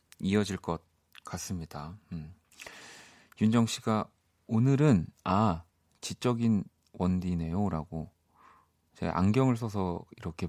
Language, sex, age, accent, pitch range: Korean, male, 40-59, native, 85-120 Hz